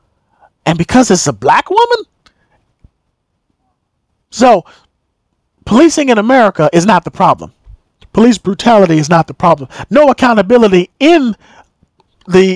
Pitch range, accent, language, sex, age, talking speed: 175-280 Hz, American, English, male, 40-59, 115 wpm